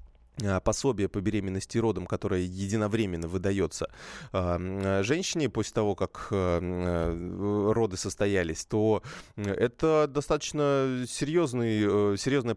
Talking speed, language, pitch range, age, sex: 85 wpm, Russian, 100-125 Hz, 20-39, male